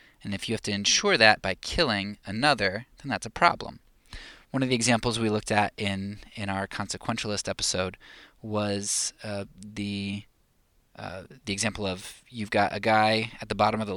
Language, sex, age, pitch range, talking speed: English, male, 20-39, 95-110 Hz, 180 wpm